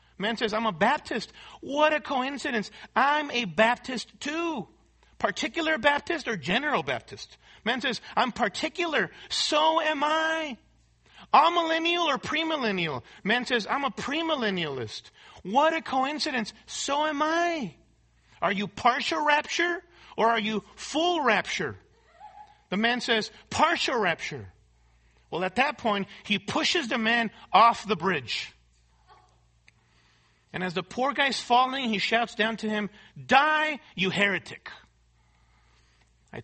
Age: 40-59